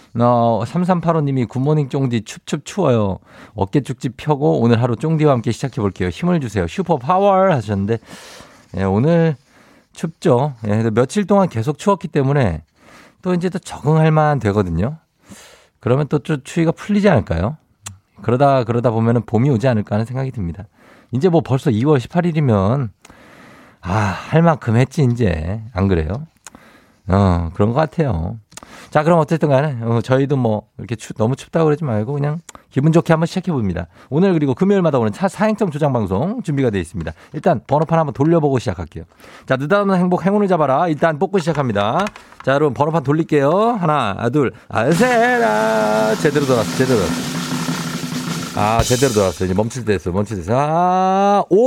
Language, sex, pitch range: Korean, male, 110-165 Hz